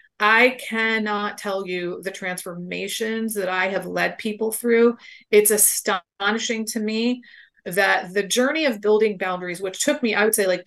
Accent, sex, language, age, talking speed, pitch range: American, female, English, 30-49, 165 wpm, 185-220 Hz